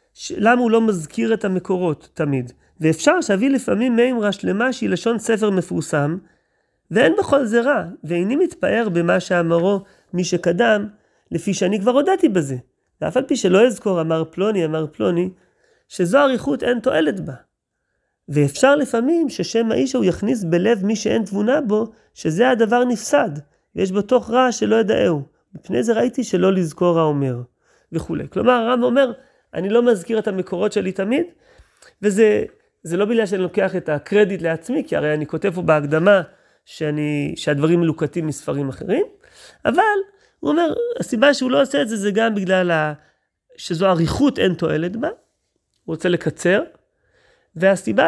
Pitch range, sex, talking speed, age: 175-250 Hz, male, 150 wpm, 30-49